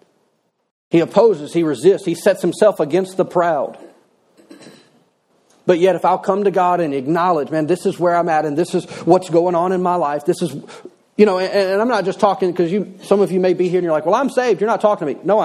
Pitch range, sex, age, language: 180-230 Hz, male, 40-59, English